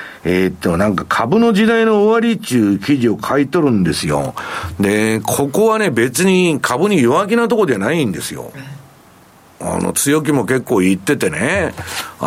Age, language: 50-69, Japanese